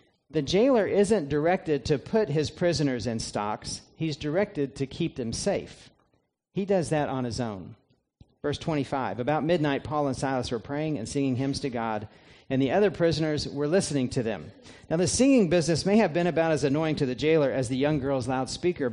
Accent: American